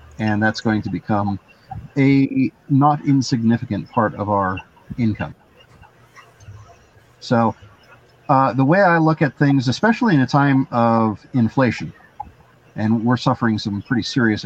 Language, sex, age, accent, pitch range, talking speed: English, male, 50-69, American, 110-135 Hz, 135 wpm